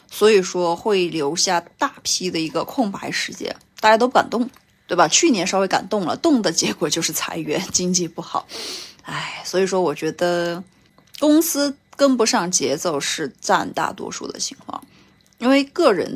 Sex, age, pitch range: female, 20-39, 165-215 Hz